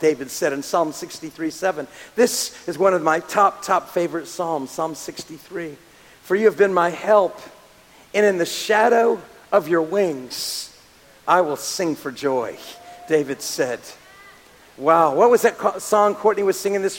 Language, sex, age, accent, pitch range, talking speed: English, male, 50-69, American, 190-250 Hz, 165 wpm